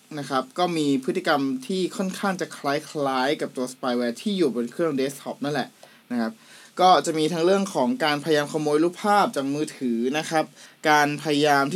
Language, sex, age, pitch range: Thai, male, 20-39, 135-175 Hz